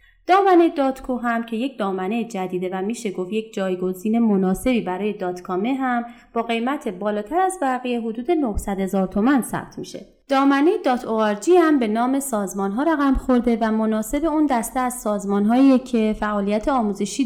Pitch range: 200-255 Hz